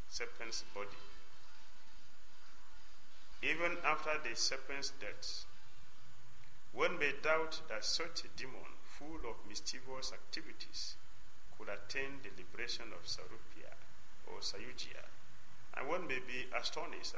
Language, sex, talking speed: English, male, 110 wpm